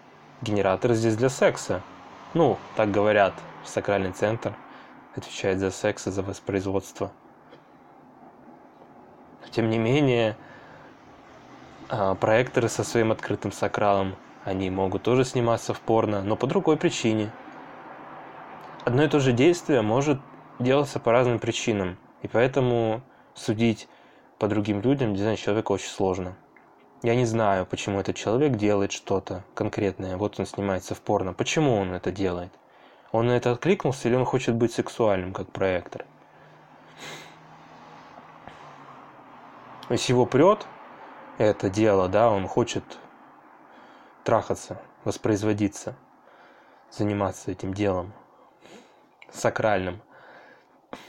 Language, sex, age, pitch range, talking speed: Russian, male, 20-39, 100-125 Hz, 115 wpm